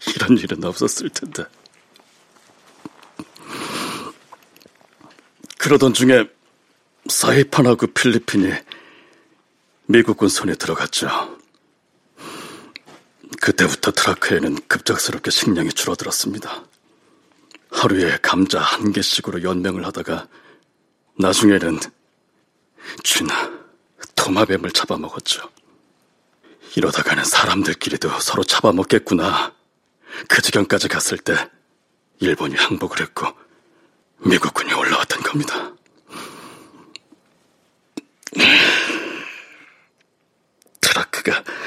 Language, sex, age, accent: Korean, male, 40-59, native